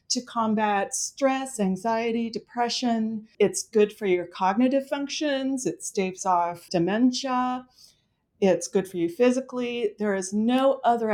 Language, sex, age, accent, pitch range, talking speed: English, female, 40-59, American, 195-250 Hz, 130 wpm